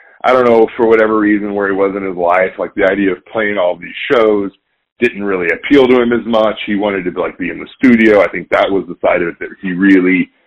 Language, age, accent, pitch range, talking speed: English, 40-59, American, 95-115 Hz, 270 wpm